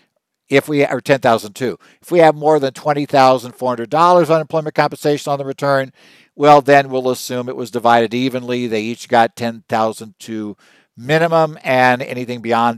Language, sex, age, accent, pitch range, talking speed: English, male, 60-79, American, 115-155 Hz, 185 wpm